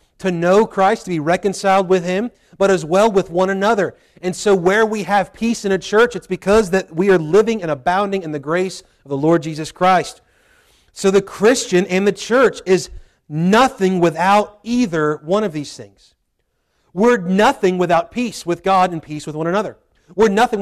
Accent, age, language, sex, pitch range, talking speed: American, 40-59, English, male, 155-200 Hz, 190 wpm